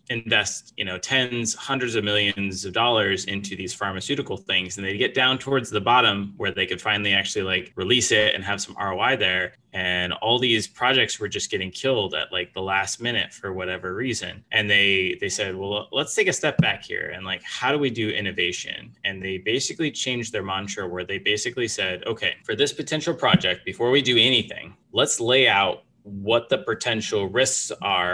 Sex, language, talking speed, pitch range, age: male, English, 200 wpm, 95-130 Hz, 20-39